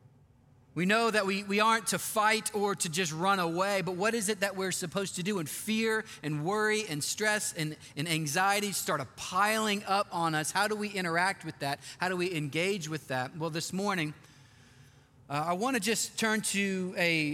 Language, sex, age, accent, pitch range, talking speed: English, male, 30-49, American, 150-205 Hz, 200 wpm